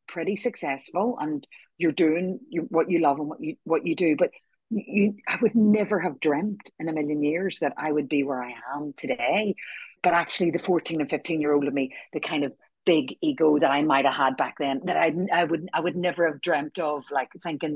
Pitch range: 150-195 Hz